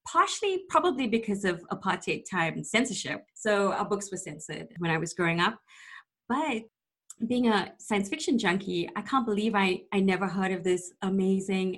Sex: female